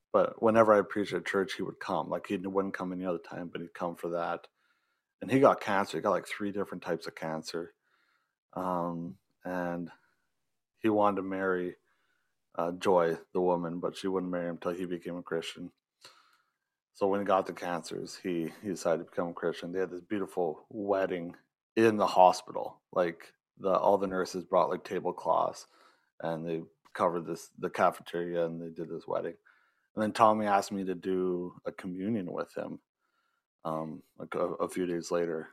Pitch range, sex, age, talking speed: 85-95 Hz, male, 30-49, 185 wpm